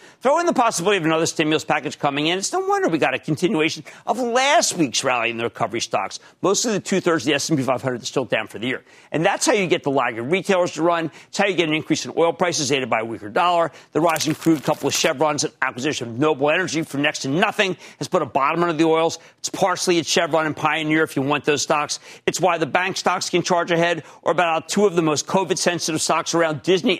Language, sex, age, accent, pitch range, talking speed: English, male, 50-69, American, 145-180 Hz, 250 wpm